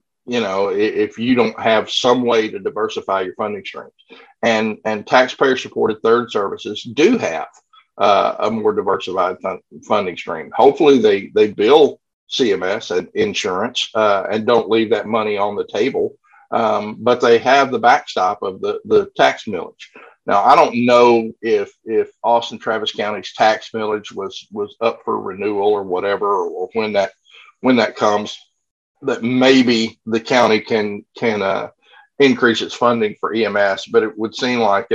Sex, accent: male, American